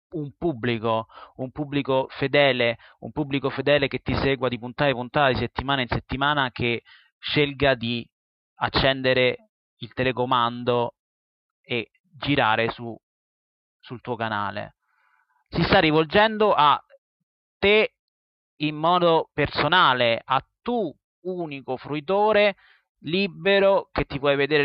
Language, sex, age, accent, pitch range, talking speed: Italian, male, 30-49, native, 120-145 Hz, 115 wpm